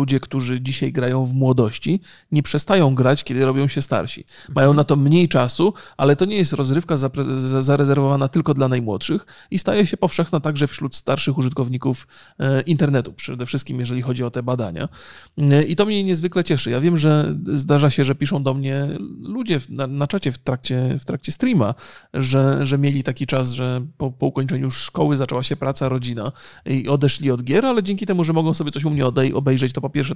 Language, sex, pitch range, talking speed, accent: Polish, male, 130-155 Hz, 190 wpm, native